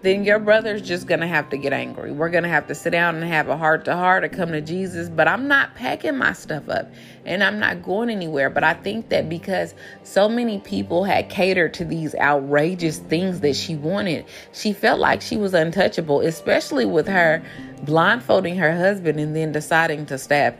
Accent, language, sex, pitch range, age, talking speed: American, English, female, 145-185 Hz, 30-49, 205 wpm